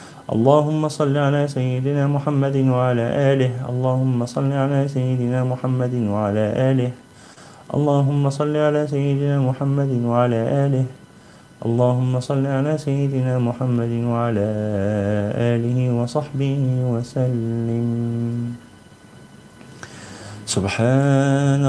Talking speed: 85 wpm